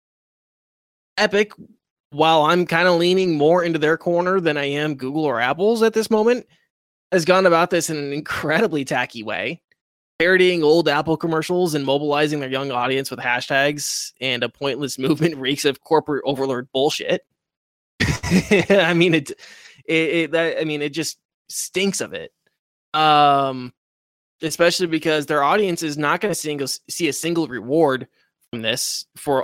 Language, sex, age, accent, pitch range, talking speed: English, male, 20-39, American, 135-170 Hz, 155 wpm